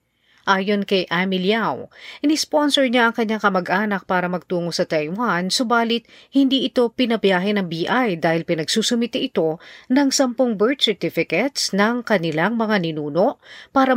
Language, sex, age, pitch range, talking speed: Filipino, female, 40-59, 170-230 Hz, 135 wpm